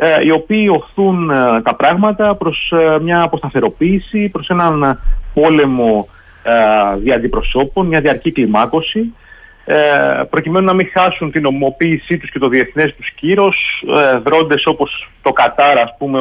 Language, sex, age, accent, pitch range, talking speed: Greek, male, 30-49, native, 115-165 Hz, 125 wpm